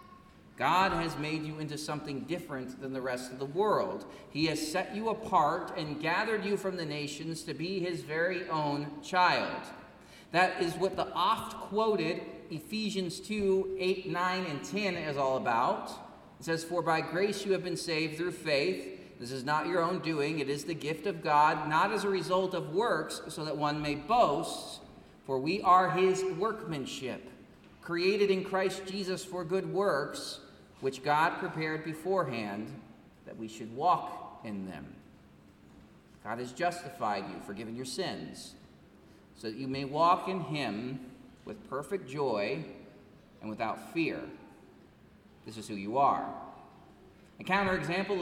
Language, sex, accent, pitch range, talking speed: English, male, American, 145-185 Hz, 160 wpm